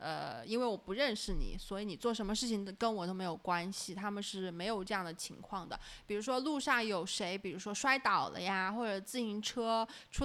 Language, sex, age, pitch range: Chinese, female, 20-39, 195-255 Hz